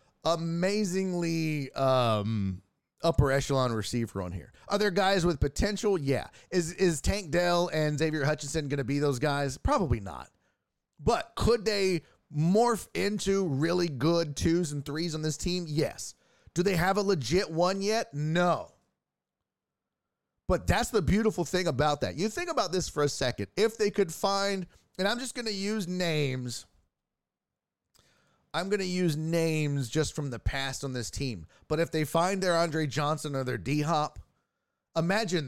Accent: American